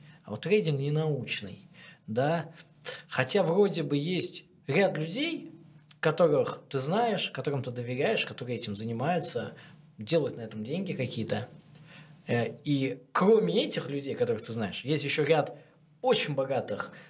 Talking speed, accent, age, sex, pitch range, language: 130 wpm, native, 20-39, male, 125-165 Hz, Russian